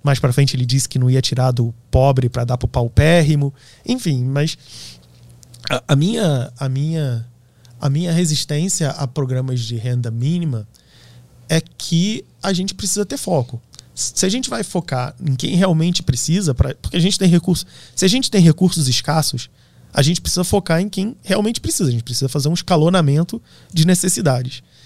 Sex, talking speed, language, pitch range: male, 180 wpm, Portuguese, 125-160 Hz